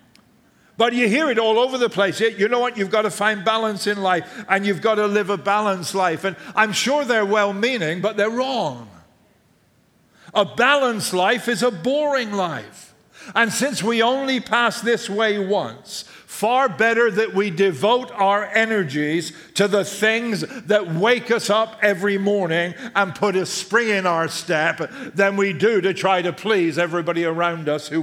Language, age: English, 50-69